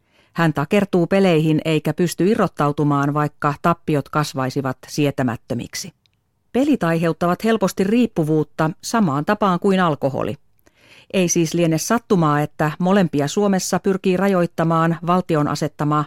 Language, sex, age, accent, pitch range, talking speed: Finnish, female, 40-59, native, 140-185 Hz, 110 wpm